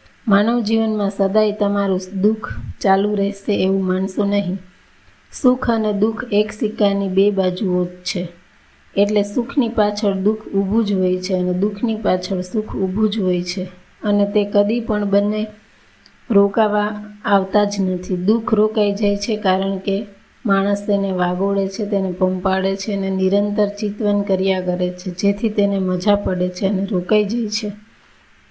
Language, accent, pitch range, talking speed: Gujarati, native, 195-210 Hz, 95 wpm